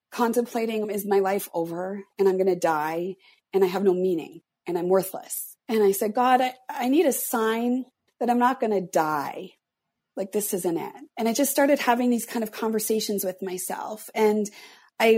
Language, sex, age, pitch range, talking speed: English, female, 30-49, 195-230 Hz, 200 wpm